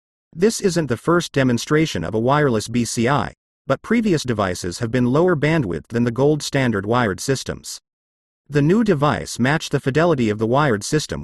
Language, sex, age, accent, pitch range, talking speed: English, male, 40-59, American, 110-160 Hz, 170 wpm